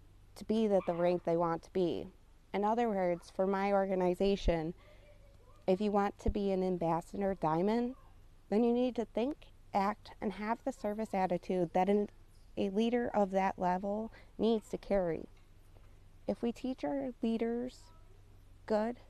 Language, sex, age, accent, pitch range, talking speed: English, female, 20-39, American, 175-220 Hz, 155 wpm